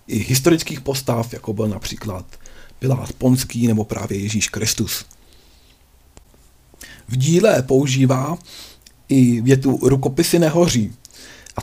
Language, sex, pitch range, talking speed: Czech, male, 115-140 Hz, 105 wpm